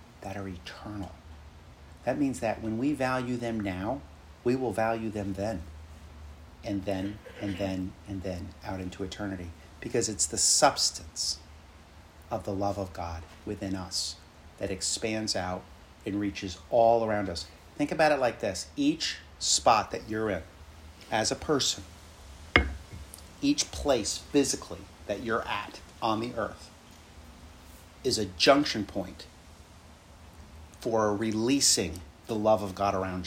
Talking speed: 140 wpm